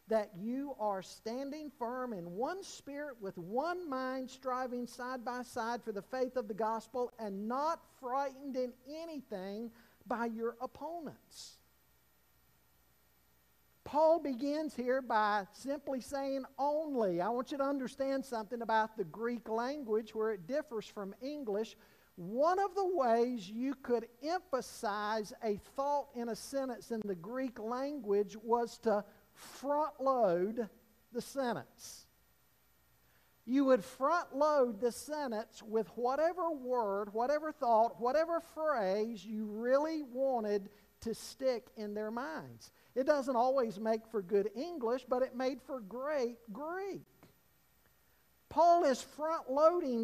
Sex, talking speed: male, 135 wpm